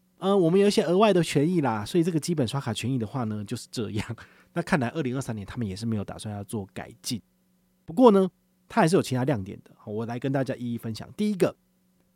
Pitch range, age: 105-150 Hz, 30-49